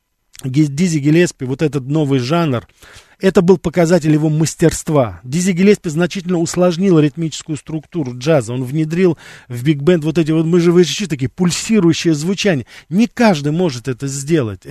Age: 40-59